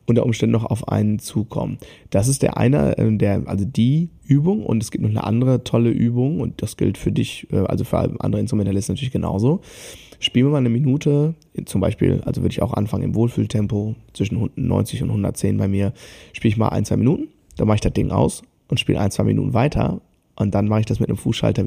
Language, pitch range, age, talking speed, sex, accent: German, 105-120 Hz, 20-39, 220 wpm, male, German